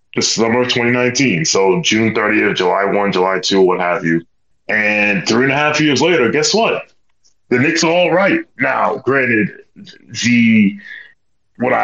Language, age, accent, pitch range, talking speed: English, 20-39, American, 105-150 Hz, 160 wpm